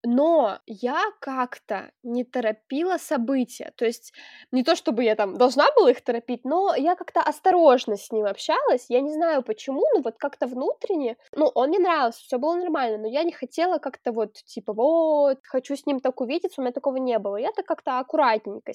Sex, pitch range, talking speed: female, 235-315 Hz, 190 wpm